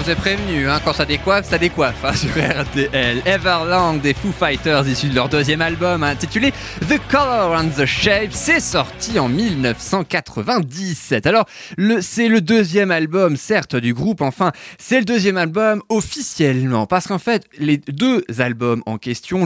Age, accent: 20-39, French